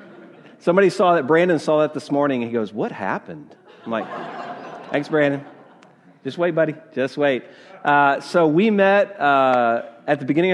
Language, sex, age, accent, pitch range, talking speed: English, male, 40-59, American, 130-165 Hz, 170 wpm